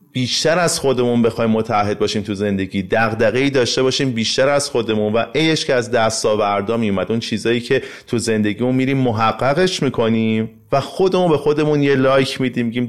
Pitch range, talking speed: 105-140 Hz, 170 wpm